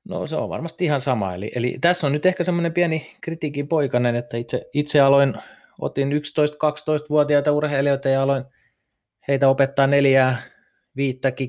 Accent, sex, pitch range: native, male, 110-145 Hz